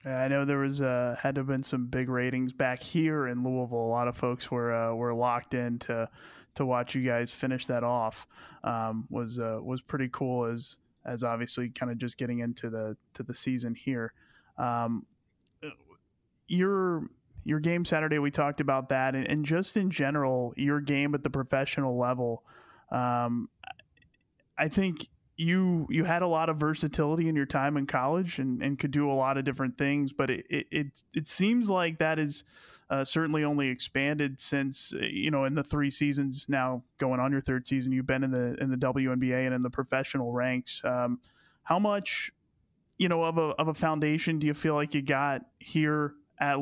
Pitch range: 125-150 Hz